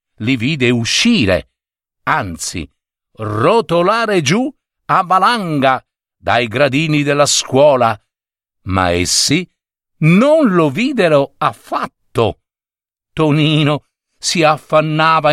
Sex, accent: male, native